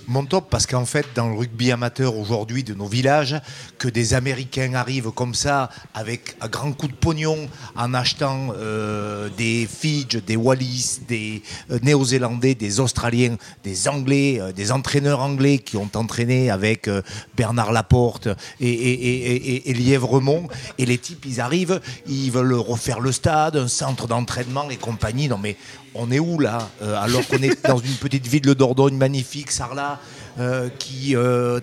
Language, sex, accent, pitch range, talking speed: French, male, French, 120-145 Hz, 175 wpm